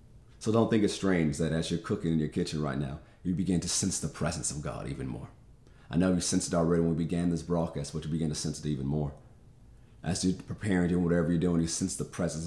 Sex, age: male, 30-49